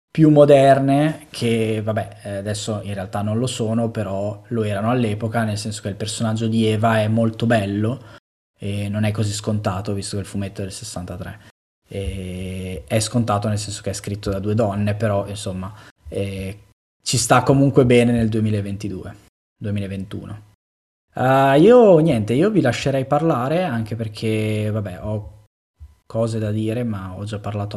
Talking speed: 160 wpm